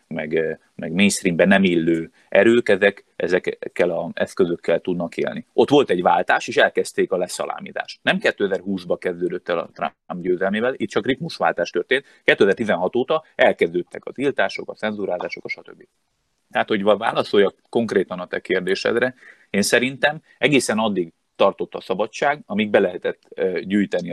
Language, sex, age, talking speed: Hungarian, male, 30-49, 140 wpm